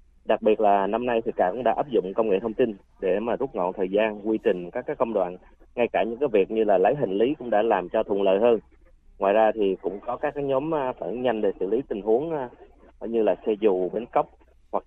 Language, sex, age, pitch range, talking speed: Vietnamese, male, 20-39, 95-130 Hz, 260 wpm